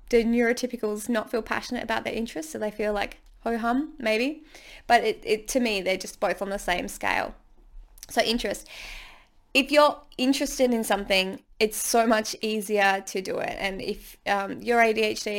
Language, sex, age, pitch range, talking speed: English, female, 20-39, 205-235 Hz, 180 wpm